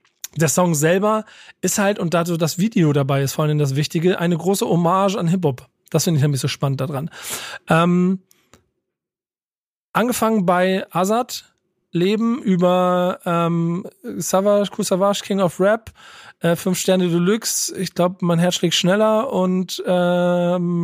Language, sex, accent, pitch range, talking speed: German, male, German, 170-190 Hz, 145 wpm